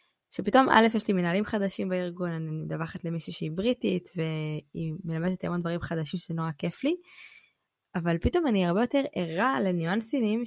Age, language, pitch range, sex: 20-39, Hebrew, 170-230 Hz, female